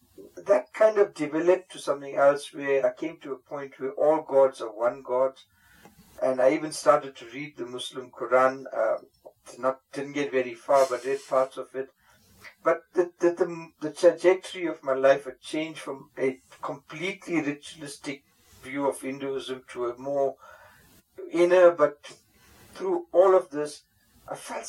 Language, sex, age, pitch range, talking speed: English, male, 50-69, 130-180 Hz, 170 wpm